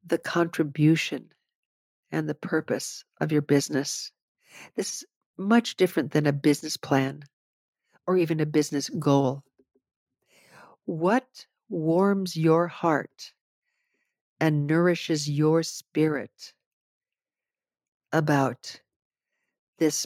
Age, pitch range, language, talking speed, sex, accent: 60-79, 145-175 Hz, English, 90 wpm, female, American